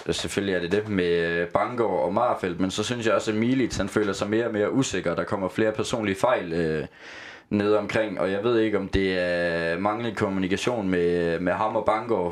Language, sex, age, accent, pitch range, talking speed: Danish, male, 20-39, native, 90-110 Hz, 215 wpm